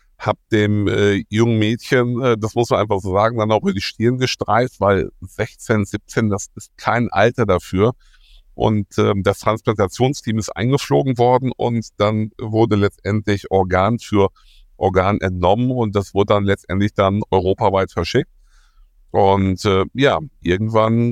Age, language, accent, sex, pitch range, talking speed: 50-69, German, German, male, 95-110 Hz, 150 wpm